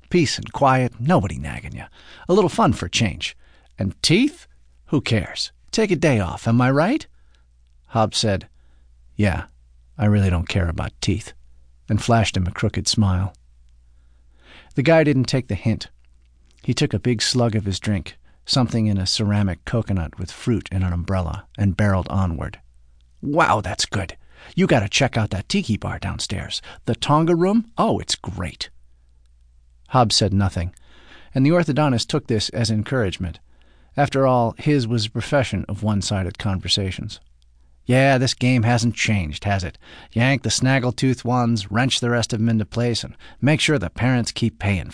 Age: 50-69